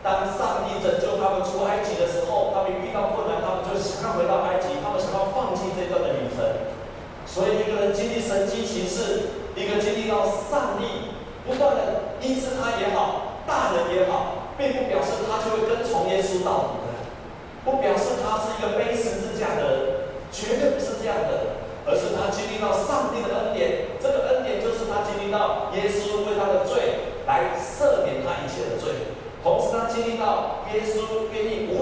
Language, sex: Chinese, male